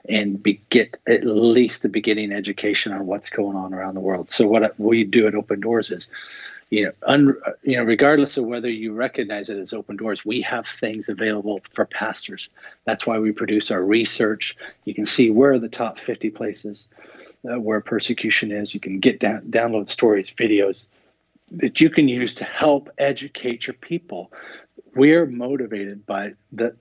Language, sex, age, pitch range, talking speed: English, male, 40-59, 105-135 Hz, 185 wpm